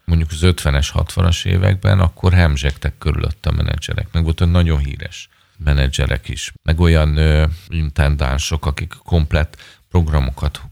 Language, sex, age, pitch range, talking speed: Hungarian, male, 40-59, 75-95 Hz, 135 wpm